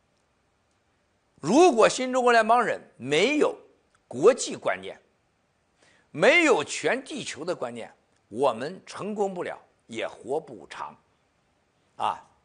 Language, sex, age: Chinese, male, 50-69